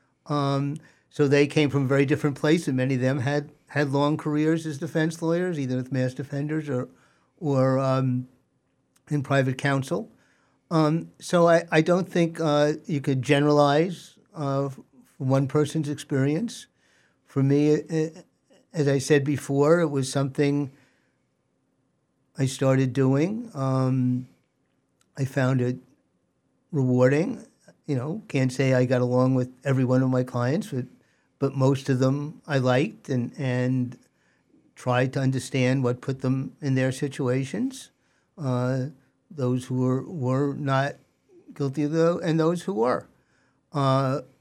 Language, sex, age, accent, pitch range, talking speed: English, male, 50-69, American, 130-150 Hz, 145 wpm